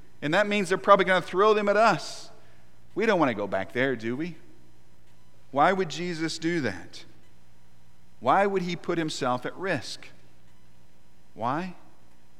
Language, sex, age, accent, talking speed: English, male, 40-59, American, 160 wpm